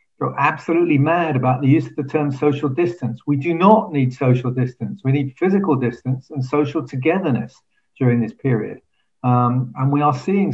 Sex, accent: male, British